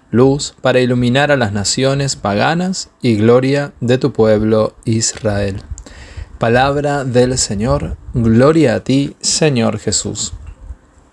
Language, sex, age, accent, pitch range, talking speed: Spanish, male, 20-39, Argentinian, 110-145 Hz, 115 wpm